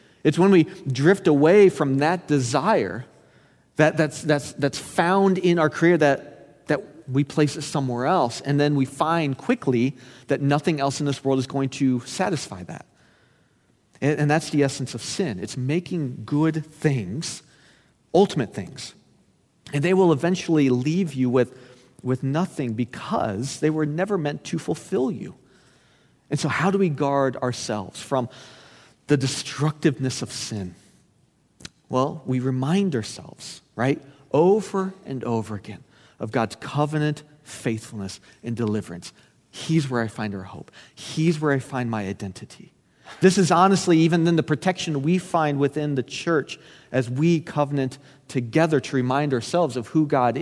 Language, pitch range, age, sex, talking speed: English, 130-160 Hz, 40-59, male, 155 wpm